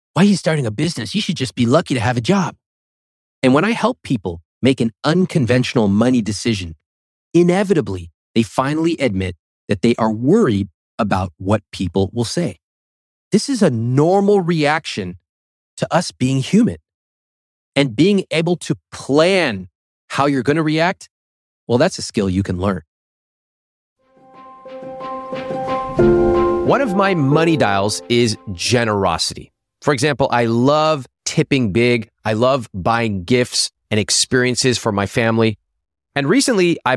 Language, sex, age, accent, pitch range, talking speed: English, male, 30-49, American, 100-160 Hz, 145 wpm